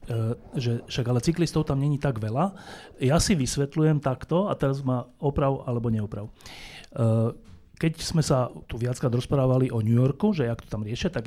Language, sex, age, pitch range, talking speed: Slovak, male, 30-49, 120-155 Hz, 185 wpm